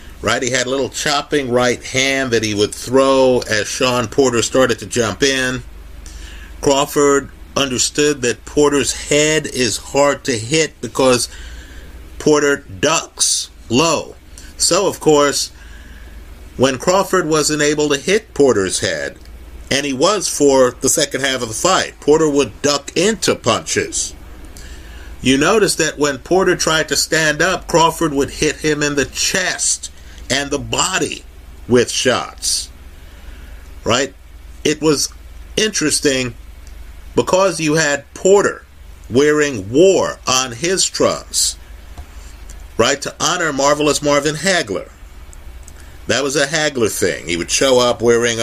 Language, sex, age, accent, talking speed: English, male, 50-69, American, 135 wpm